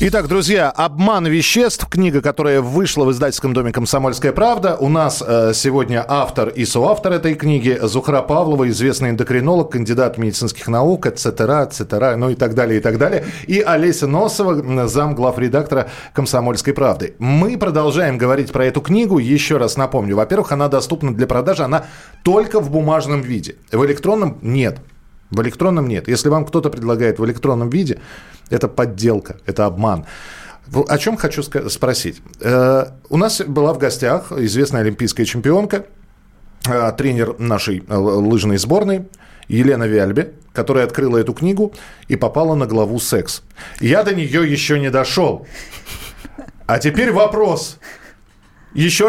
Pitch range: 120-165 Hz